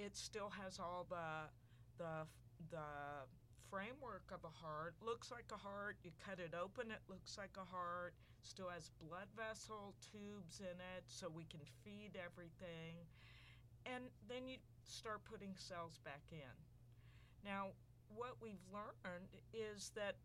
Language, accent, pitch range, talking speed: English, American, 125-185 Hz, 150 wpm